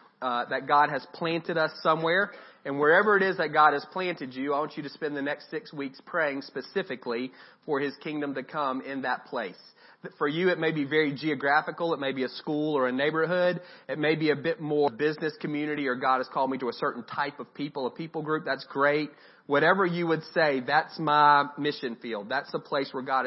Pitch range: 135-175 Hz